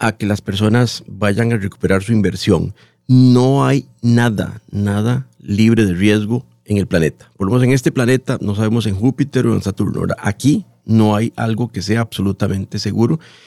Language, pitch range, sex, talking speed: Spanish, 100-125 Hz, male, 170 wpm